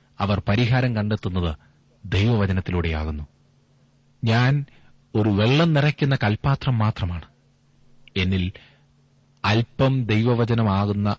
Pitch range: 95-130 Hz